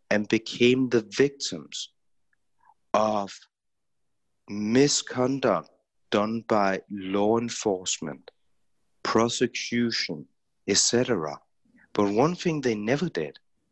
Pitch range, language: 95-130 Hz, English